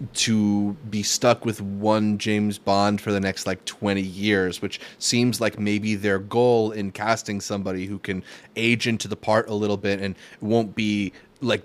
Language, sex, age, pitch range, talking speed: English, male, 30-49, 105-130 Hz, 180 wpm